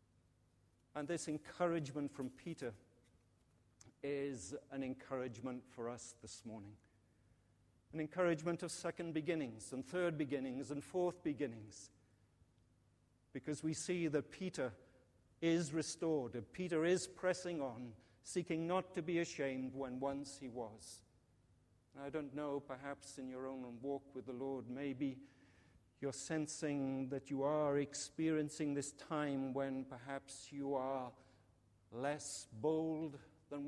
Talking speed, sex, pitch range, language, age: 125 wpm, male, 115-150 Hz, English, 50-69